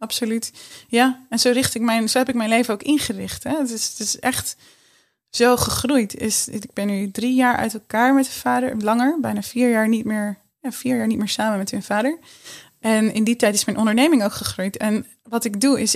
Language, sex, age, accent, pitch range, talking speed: Dutch, female, 20-39, Dutch, 210-245 Hz, 230 wpm